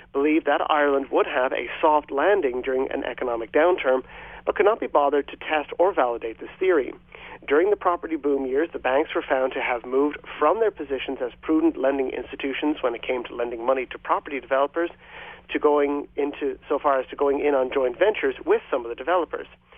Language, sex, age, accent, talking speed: English, male, 40-59, American, 205 wpm